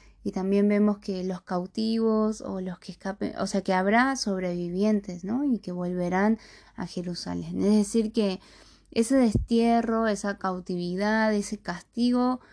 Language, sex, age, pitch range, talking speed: Spanish, female, 20-39, 185-230 Hz, 145 wpm